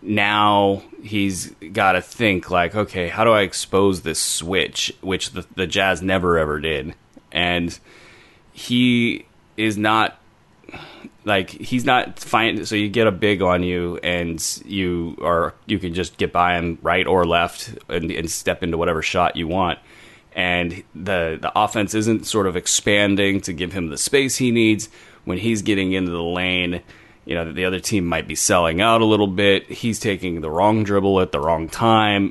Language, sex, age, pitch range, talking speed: English, male, 30-49, 90-105 Hz, 180 wpm